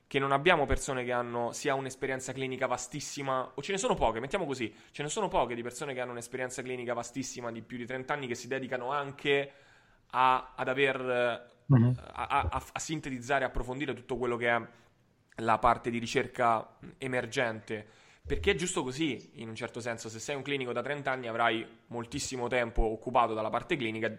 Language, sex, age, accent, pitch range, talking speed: Italian, male, 20-39, native, 120-135 Hz, 185 wpm